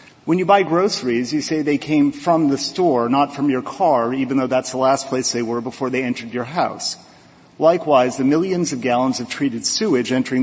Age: 40-59